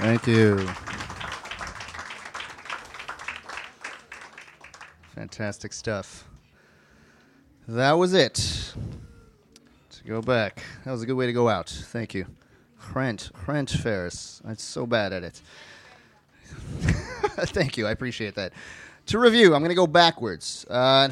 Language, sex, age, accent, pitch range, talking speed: English, male, 30-49, American, 110-135 Hz, 115 wpm